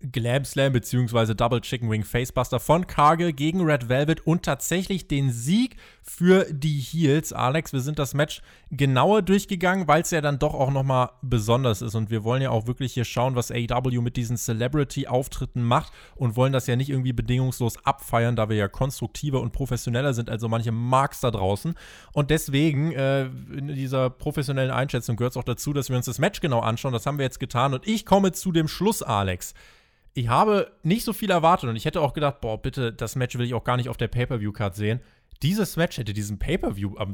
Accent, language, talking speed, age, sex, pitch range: German, German, 210 wpm, 20-39, male, 120-155 Hz